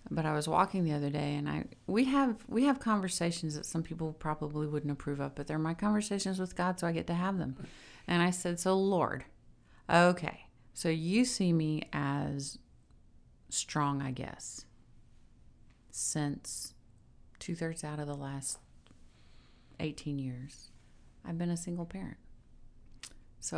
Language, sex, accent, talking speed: English, female, American, 155 wpm